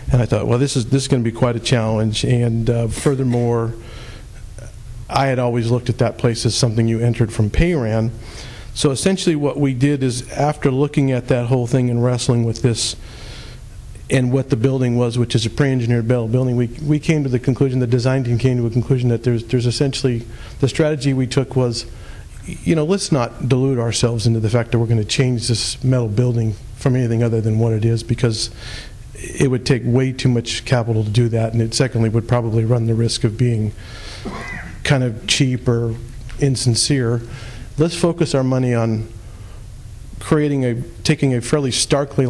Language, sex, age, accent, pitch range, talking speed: English, male, 50-69, American, 115-130 Hz, 200 wpm